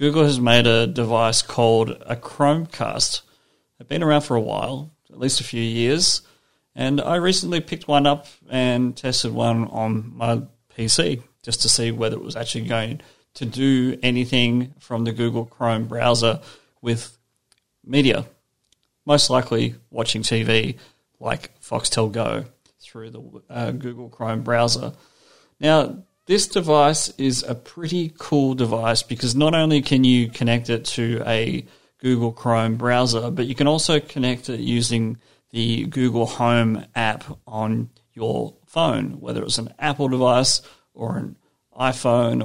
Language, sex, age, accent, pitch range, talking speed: English, male, 30-49, Australian, 115-135 Hz, 145 wpm